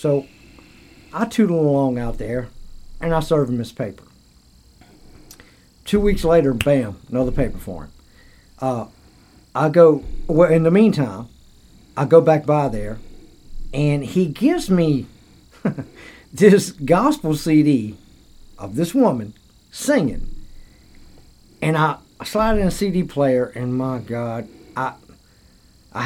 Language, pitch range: English, 125-165 Hz